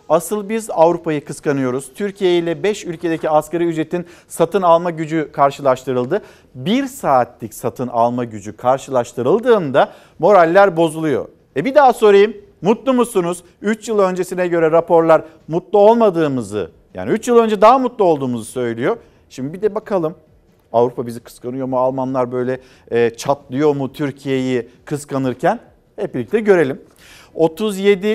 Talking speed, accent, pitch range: 130 wpm, native, 130-185 Hz